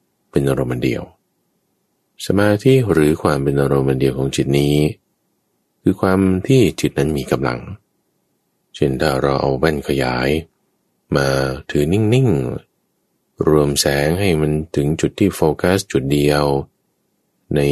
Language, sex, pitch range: Thai, male, 70-90 Hz